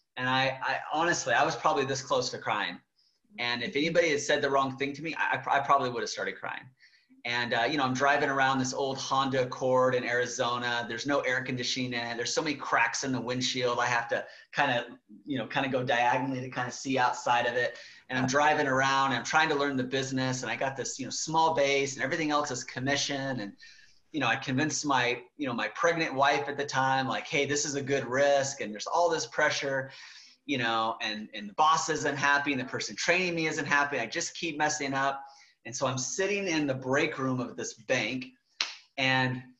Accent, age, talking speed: American, 30-49, 235 wpm